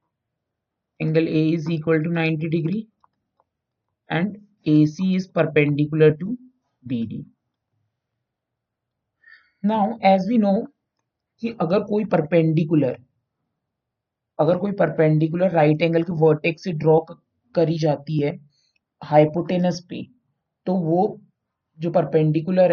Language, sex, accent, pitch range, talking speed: Hindi, male, native, 130-175 Hz, 105 wpm